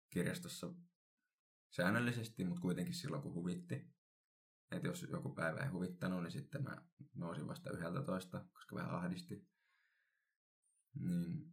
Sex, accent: male, native